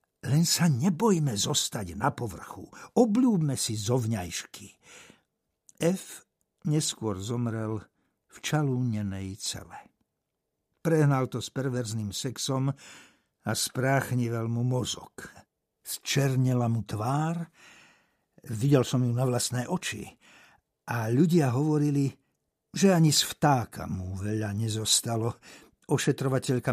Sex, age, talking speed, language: male, 60-79, 100 wpm, Slovak